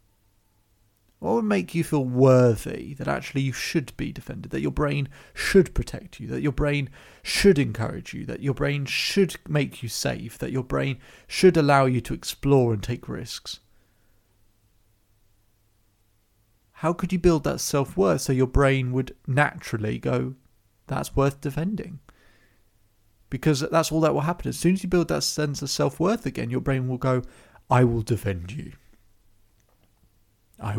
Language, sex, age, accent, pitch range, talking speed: English, male, 30-49, British, 105-140 Hz, 160 wpm